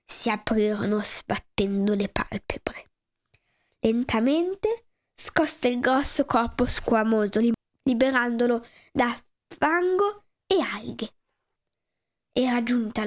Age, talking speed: 10-29, 85 wpm